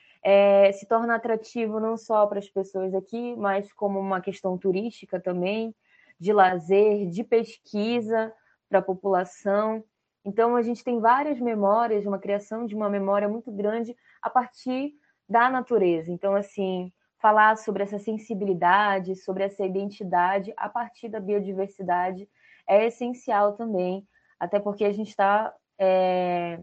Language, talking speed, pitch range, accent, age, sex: Portuguese, 140 wpm, 190-220 Hz, Brazilian, 20-39, female